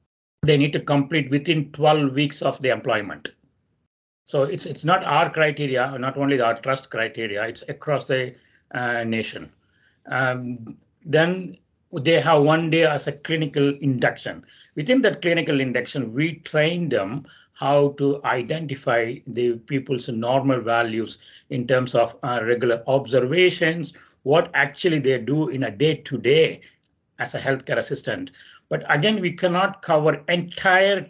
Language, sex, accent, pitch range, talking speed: English, male, Indian, 130-170 Hz, 145 wpm